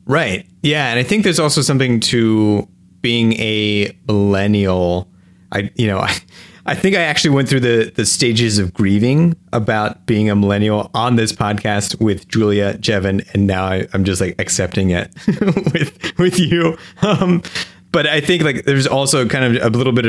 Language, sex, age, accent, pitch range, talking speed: English, male, 30-49, American, 90-120 Hz, 180 wpm